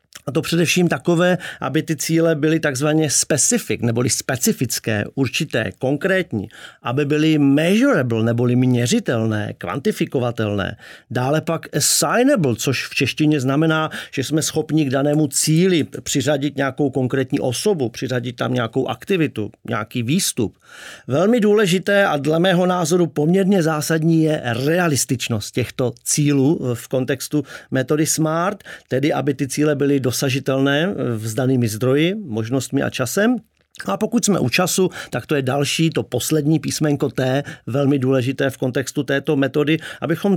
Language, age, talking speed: Czech, 40-59, 135 wpm